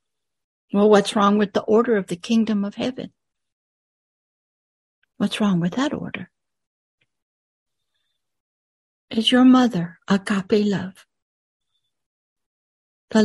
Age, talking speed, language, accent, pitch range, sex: 60-79, 105 wpm, English, American, 190-235 Hz, female